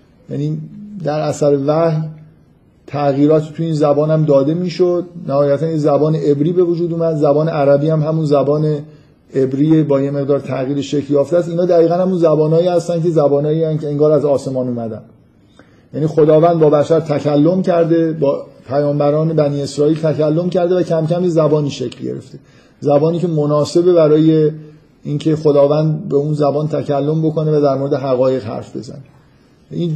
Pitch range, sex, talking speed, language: 135-155 Hz, male, 155 wpm, Persian